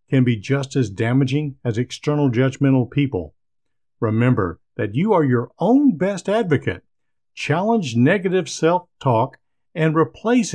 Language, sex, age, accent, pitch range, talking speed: English, male, 50-69, American, 115-160 Hz, 125 wpm